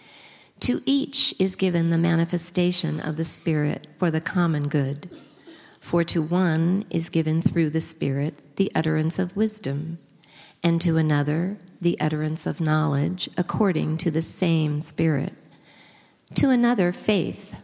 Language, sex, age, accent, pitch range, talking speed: English, female, 50-69, American, 155-185 Hz, 135 wpm